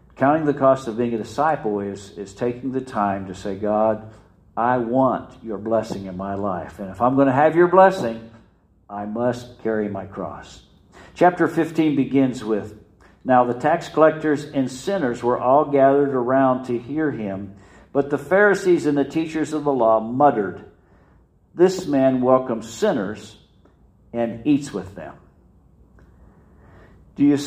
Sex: male